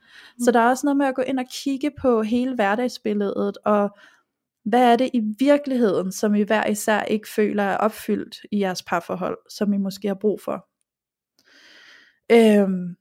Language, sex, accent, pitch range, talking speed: Danish, female, native, 205-240 Hz, 175 wpm